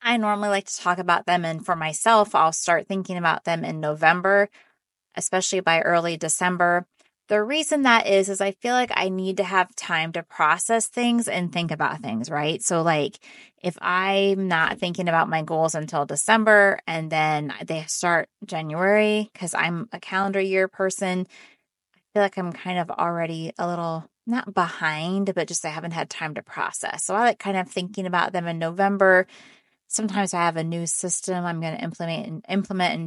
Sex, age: female, 20-39